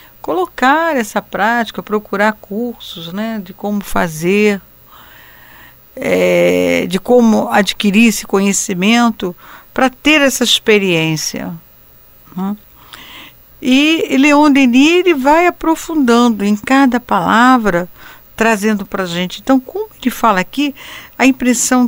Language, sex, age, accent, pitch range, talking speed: Portuguese, female, 60-79, Brazilian, 180-245 Hz, 105 wpm